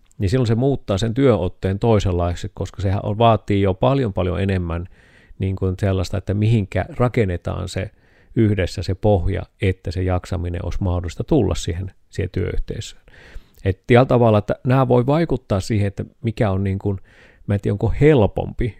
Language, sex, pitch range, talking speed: Finnish, male, 95-110 Hz, 155 wpm